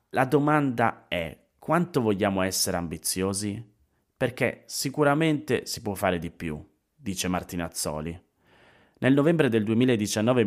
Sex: male